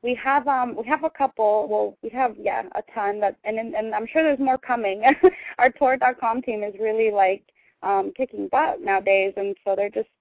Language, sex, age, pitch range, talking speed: English, female, 20-39, 210-265 Hz, 220 wpm